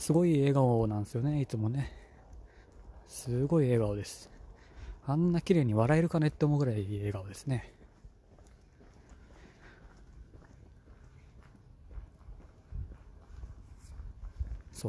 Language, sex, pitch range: Japanese, male, 80-125 Hz